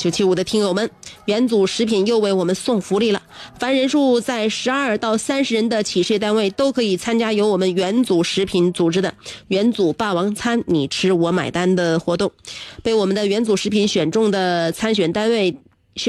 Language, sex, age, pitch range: Chinese, female, 30-49, 185-245 Hz